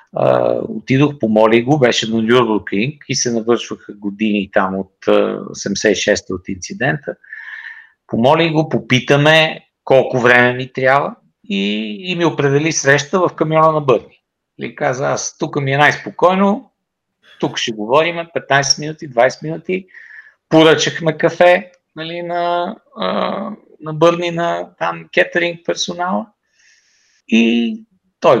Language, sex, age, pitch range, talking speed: Bulgarian, male, 50-69, 125-180 Hz, 130 wpm